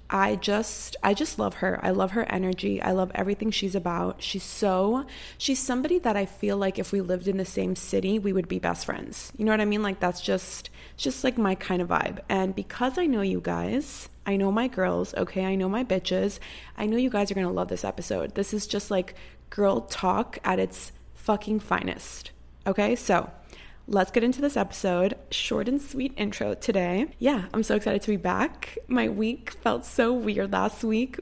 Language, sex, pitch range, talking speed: English, female, 180-215 Hz, 210 wpm